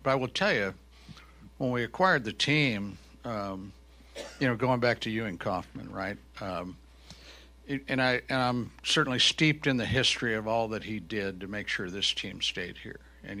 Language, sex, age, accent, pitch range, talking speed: English, male, 60-79, American, 100-130 Hz, 195 wpm